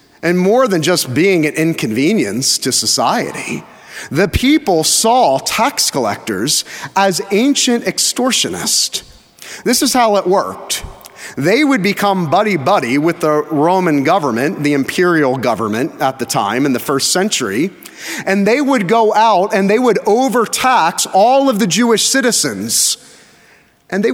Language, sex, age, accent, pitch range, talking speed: English, male, 30-49, American, 165-230 Hz, 140 wpm